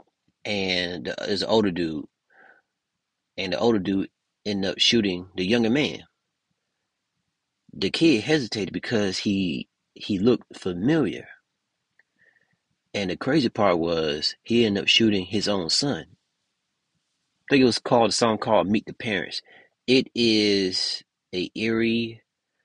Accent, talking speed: American, 130 wpm